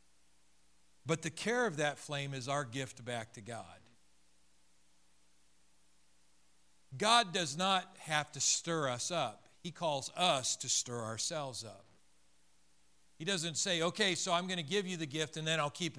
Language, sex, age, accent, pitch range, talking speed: English, male, 50-69, American, 115-165 Hz, 160 wpm